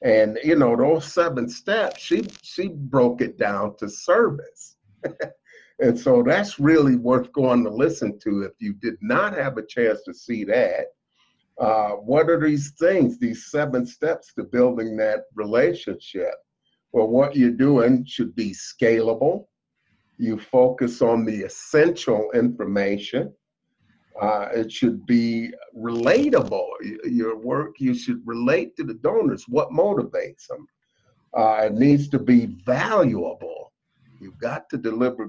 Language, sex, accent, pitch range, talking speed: English, male, American, 115-160 Hz, 140 wpm